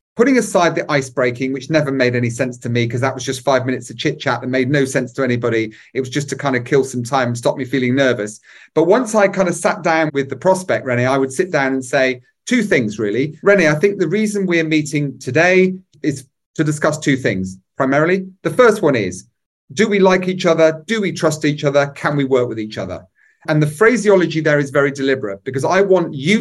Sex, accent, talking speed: male, British, 240 wpm